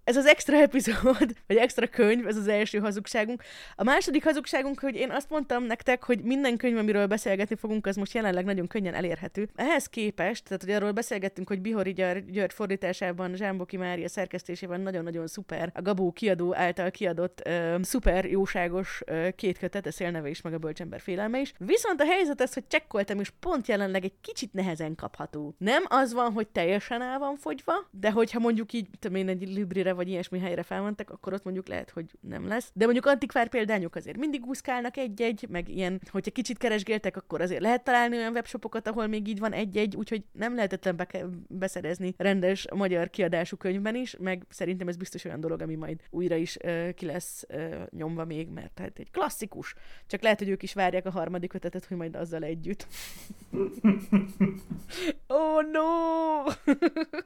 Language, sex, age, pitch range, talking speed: Hungarian, female, 20-39, 180-235 Hz, 180 wpm